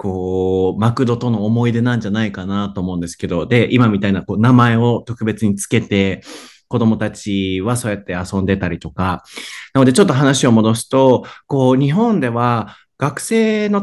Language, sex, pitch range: Japanese, male, 105-150 Hz